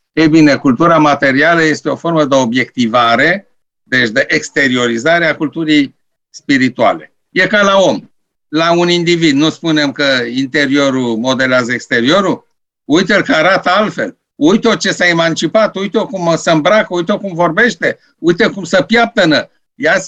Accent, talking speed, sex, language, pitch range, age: native, 145 wpm, male, Romanian, 165-195 Hz, 60-79